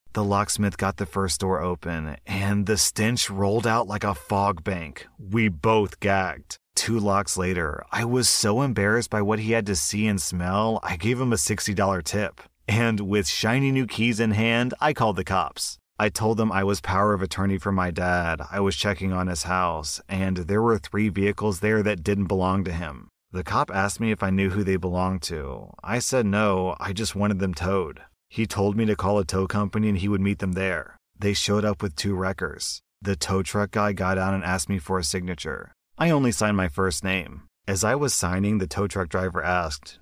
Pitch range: 95-110 Hz